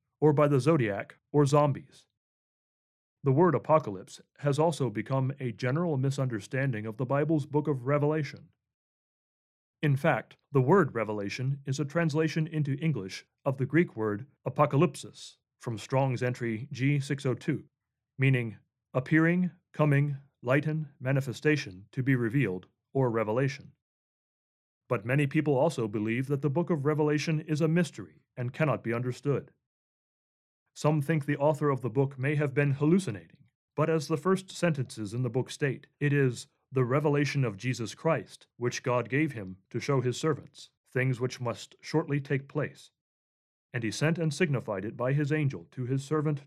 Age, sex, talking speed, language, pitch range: 40-59, male, 155 wpm, English, 125-155 Hz